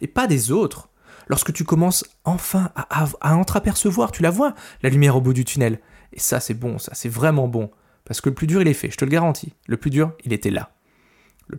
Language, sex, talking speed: French, male, 250 wpm